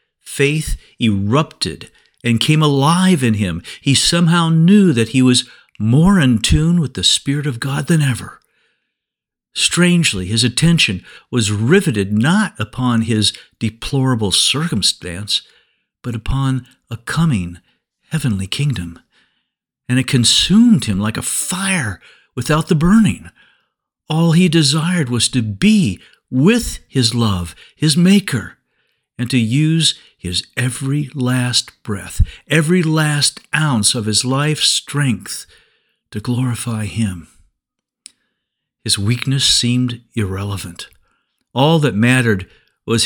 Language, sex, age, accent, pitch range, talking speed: English, male, 50-69, American, 110-160 Hz, 120 wpm